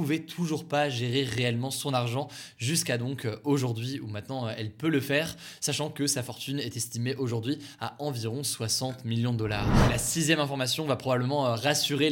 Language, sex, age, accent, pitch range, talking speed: French, male, 20-39, French, 125-150 Hz, 175 wpm